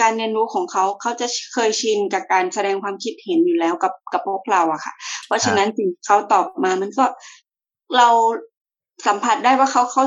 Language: Thai